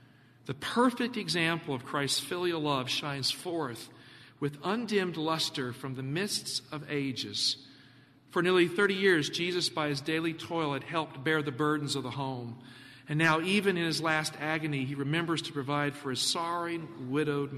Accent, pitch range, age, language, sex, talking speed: American, 130-175 Hz, 50-69, English, male, 165 wpm